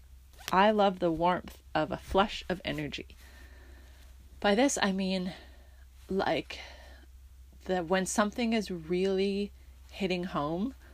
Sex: female